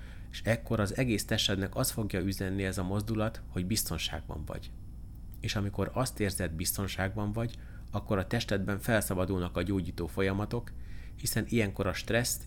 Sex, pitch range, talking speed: male, 95-110 Hz, 150 wpm